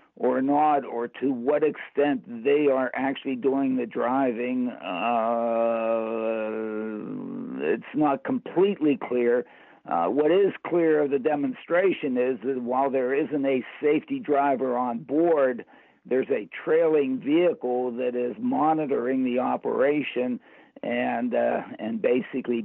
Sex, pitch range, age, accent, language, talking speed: male, 120-155 Hz, 60-79, American, English, 125 wpm